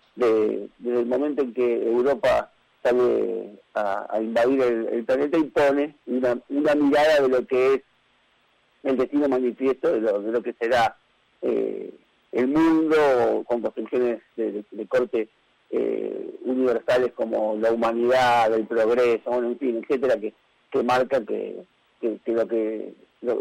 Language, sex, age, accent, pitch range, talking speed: Spanish, male, 40-59, Argentinian, 115-145 Hz, 155 wpm